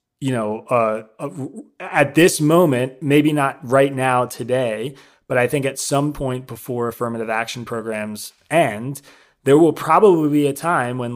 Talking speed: 160 wpm